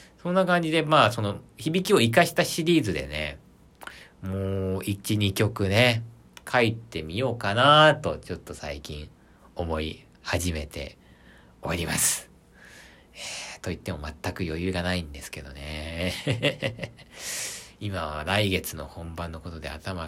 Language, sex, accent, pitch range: Japanese, male, native, 70-100 Hz